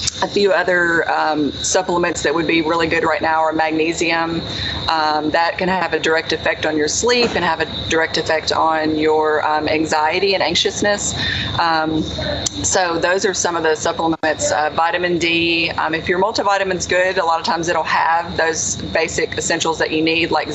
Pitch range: 155-175 Hz